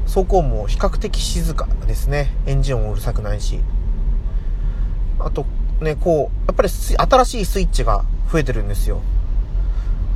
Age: 30-49